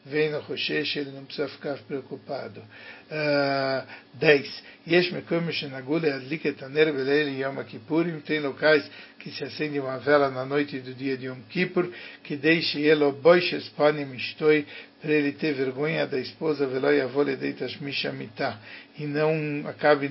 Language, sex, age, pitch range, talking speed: Turkish, male, 60-79, 140-155 Hz, 145 wpm